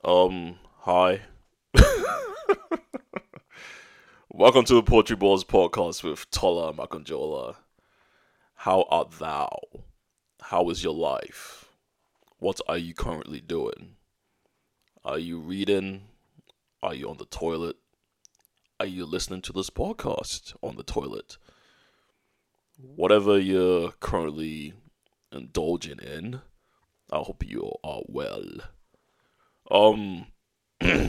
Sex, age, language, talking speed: male, 20-39, English, 100 wpm